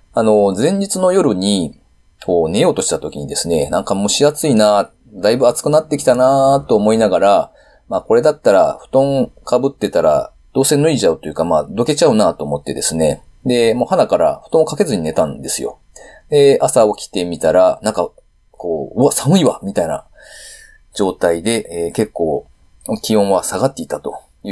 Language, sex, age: Japanese, male, 30-49